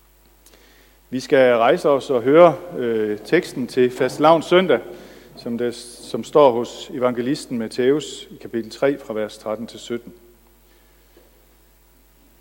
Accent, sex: native, male